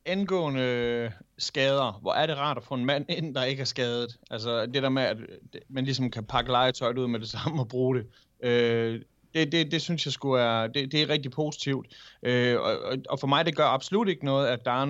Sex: male